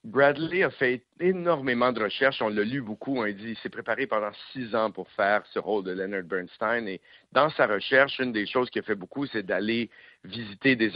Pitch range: 105-130 Hz